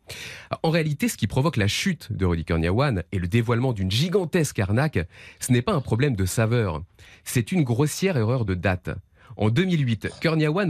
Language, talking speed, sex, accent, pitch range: French, 180 wpm, male, French, 100-150 Hz